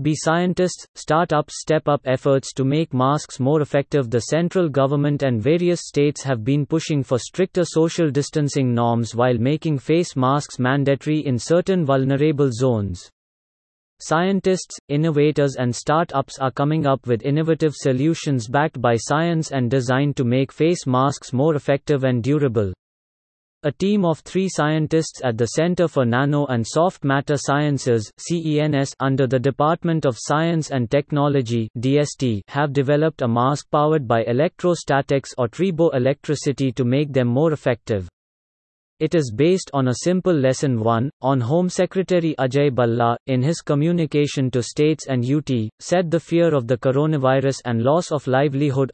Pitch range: 130-155 Hz